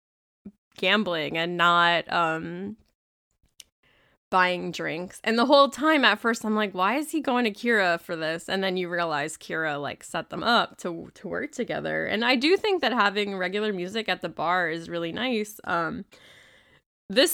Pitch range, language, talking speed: 175-220 Hz, English, 175 wpm